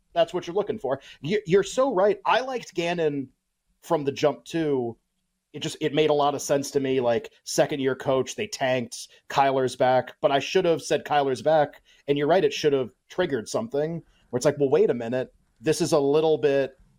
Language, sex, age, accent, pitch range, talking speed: English, male, 30-49, American, 135-175 Hz, 210 wpm